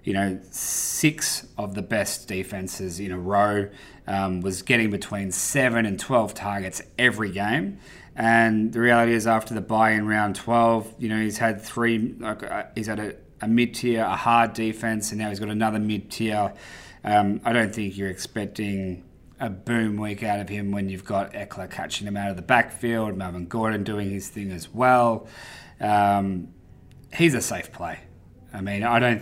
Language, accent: English, Australian